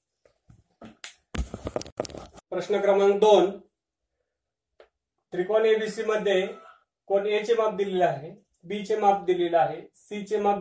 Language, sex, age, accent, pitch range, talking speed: Marathi, male, 40-59, native, 180-205 Hz, 105 wpm